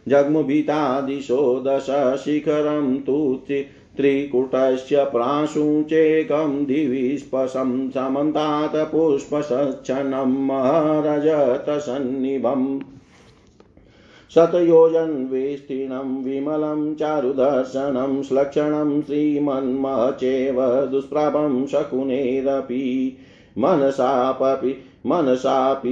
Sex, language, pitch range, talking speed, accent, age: male, Hindi, 130-150 Hz, 40 wpm, native, 50-69